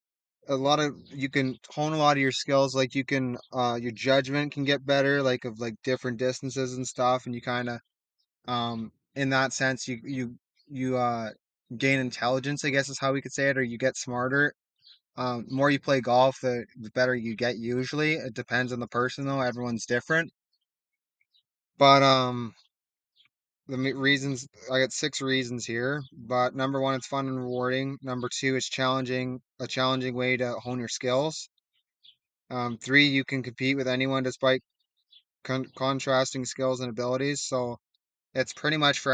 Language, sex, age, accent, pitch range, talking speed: English, male, 20-39, American, 120-135 Hz, 180 wpm